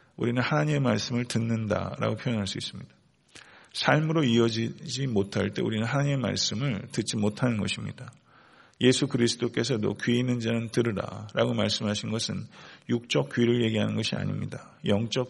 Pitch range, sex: 110-135 Hz, male